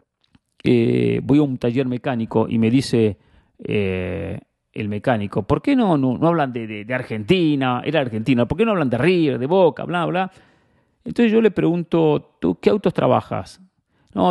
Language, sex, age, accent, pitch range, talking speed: English, male, 40-59, Argentinian, 125-180 Hz, 180 wpm